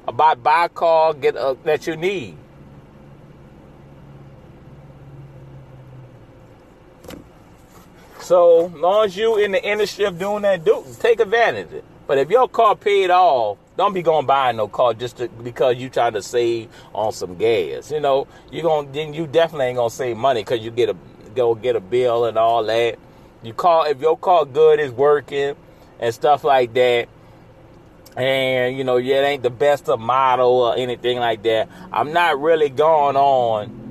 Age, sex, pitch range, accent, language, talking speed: 30-49, male, 125-180 Hz, American, English, 180 wpm